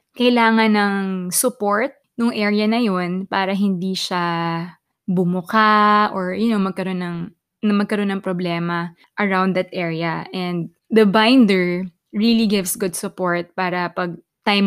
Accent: native